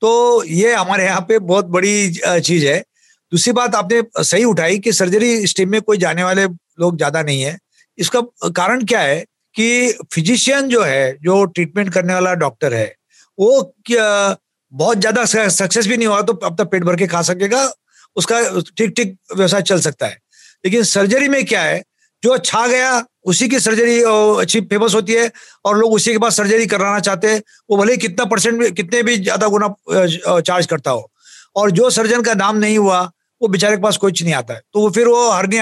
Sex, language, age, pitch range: male, Hindi, 50-69, 185-235 Hz